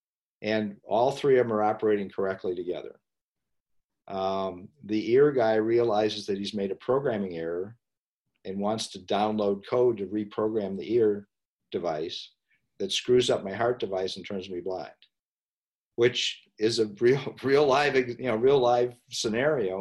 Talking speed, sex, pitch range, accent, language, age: 155 wpm, male, 100-115 Hz, American, English, 50-69